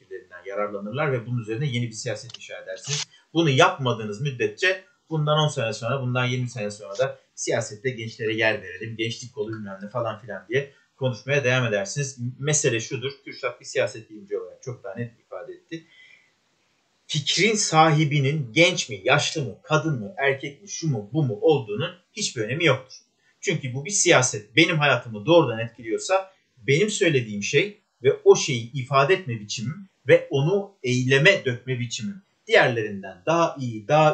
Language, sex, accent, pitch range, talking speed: Turkish, male, native, 120-155 Hz, 155 wpm